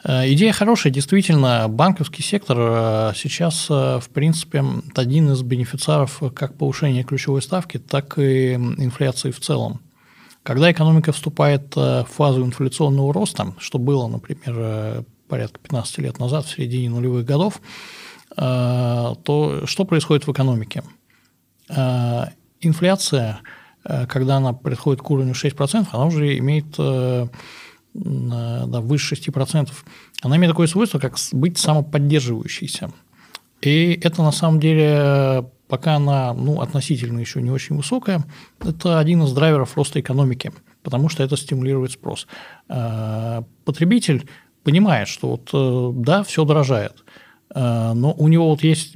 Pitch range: 125-155 Hz